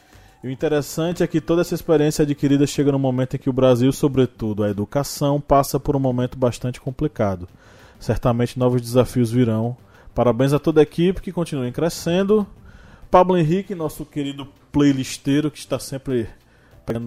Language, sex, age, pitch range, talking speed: Portuguese, male, 20-39, 110-145 Hz, 160 wpm